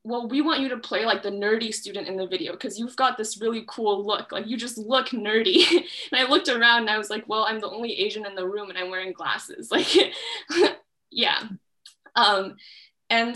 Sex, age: female, 10-29